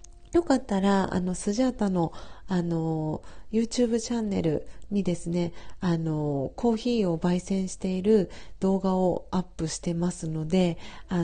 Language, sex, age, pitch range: Japanese, female, 40-59, 185-235 Hz